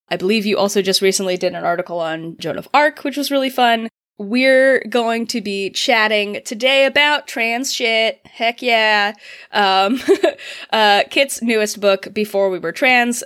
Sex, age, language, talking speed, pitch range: female, 20-39, English, 170 wpm, 190-265 Hz